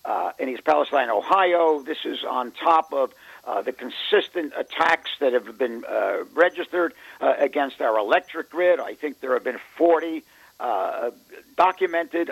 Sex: male